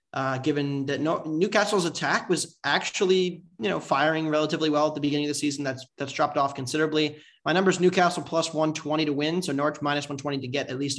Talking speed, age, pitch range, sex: 220 wpm, 20-39, 145-170 Hz, male